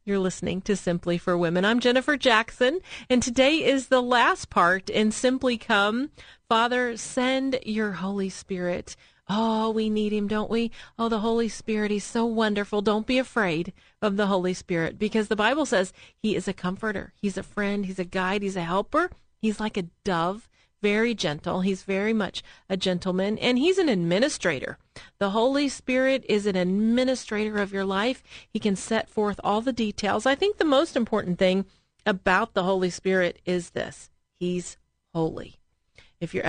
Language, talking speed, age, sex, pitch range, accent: English, 175 wpm, 40-59, female, 185-235 Hz, American